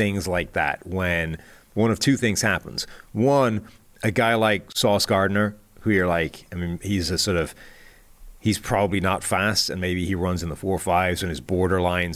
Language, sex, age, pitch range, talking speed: English, male, 30-49, 95-120 Hz, 190 wpm